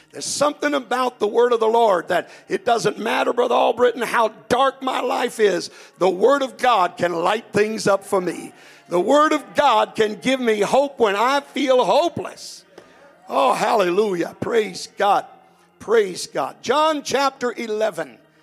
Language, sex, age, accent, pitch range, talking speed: English, male, 60-79, American, 195-285 Hz, 165 wpm